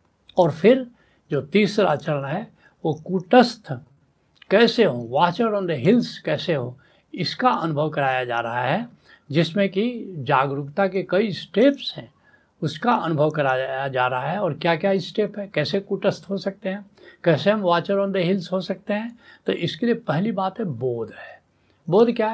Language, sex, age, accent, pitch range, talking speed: Hindi, male, 70-89, native, 145-205 Hz, 170 wpm